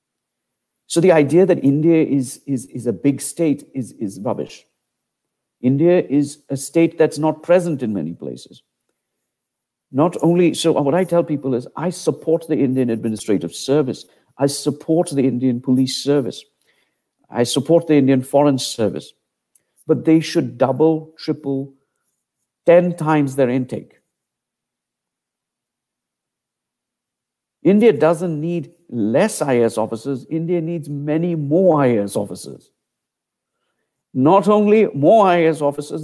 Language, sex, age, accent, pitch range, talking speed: English, male, 50-69, Indian, 130-165 Hz, 125 wpm